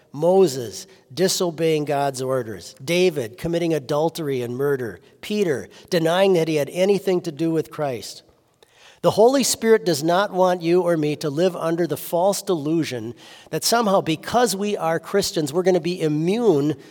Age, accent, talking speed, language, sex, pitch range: 50-69, American, 160 wpm, English, male, 145-190 Hz